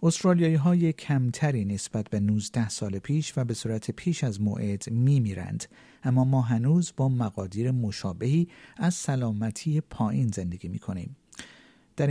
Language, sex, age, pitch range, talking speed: Persian, male, 50-69, 105-135 Hz, 140 wpm